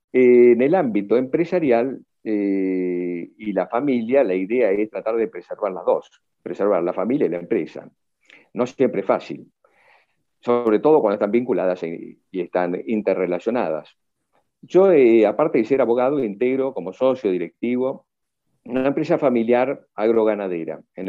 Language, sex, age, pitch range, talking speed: English, male, 50-69, 95-125 Hz, 145 wpm